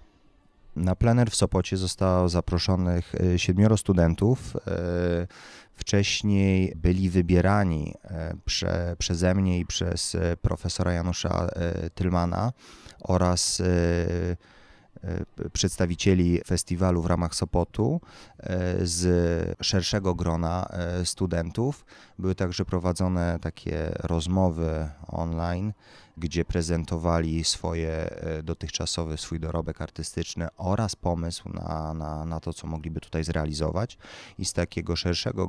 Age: 30-49